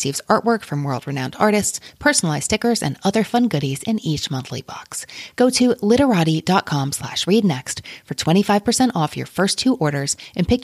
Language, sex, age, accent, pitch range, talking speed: English, female, 30-49, American, 150-220 Hz, 165 wpm